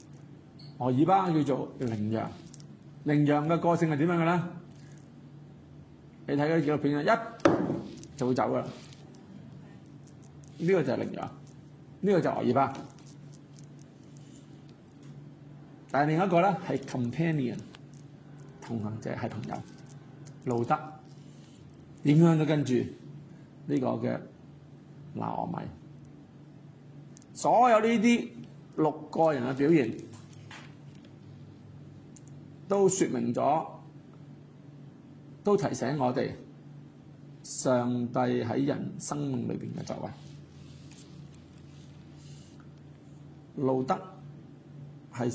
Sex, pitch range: male, 135-150 Hz